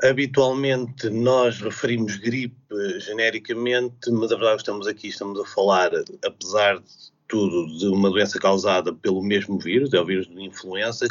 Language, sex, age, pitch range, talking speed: Portuguese, male, 30-49, 100-125 Hz, 160 wpm